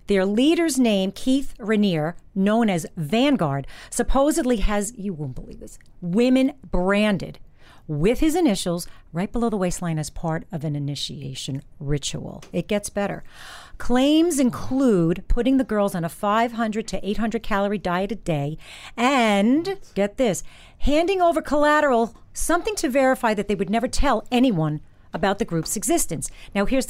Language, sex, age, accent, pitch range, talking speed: English, female, 40-59, American, 180-255 Hz, 150 wpm